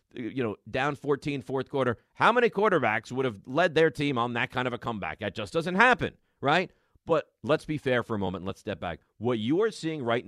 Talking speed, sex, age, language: 230 wpm, male, 40-59, English